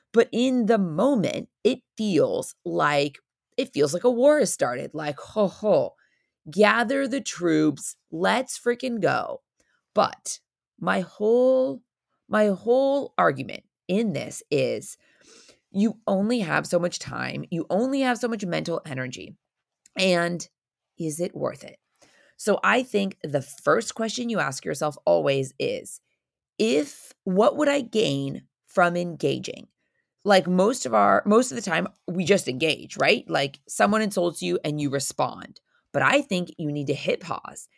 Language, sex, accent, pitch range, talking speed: English, female, American, 155-225 Hz, 150 wpm